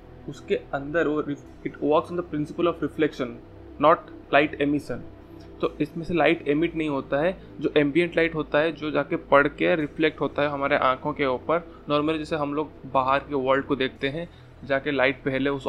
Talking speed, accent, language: 195 wpm, native, Hindi